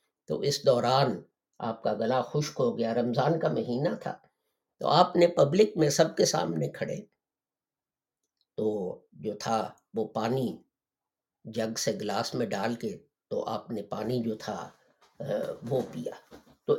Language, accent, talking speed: English, Indian, 130 wpm